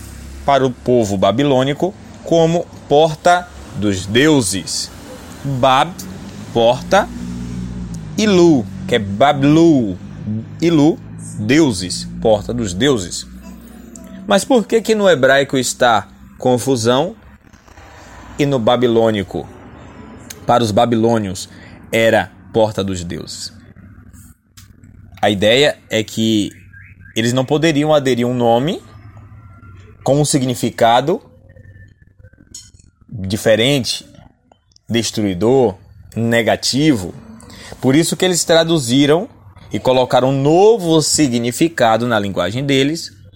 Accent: Brazilian